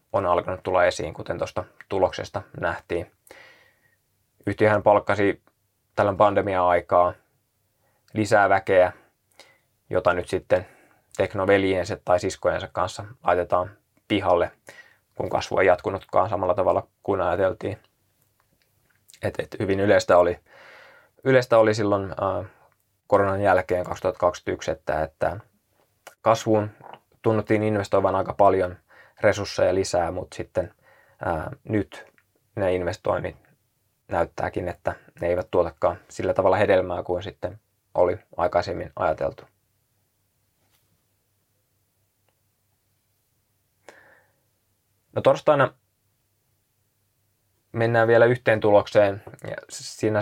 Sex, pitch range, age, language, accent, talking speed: male, 95-110 Hz, 20-39, Finnish, native, 95 wpm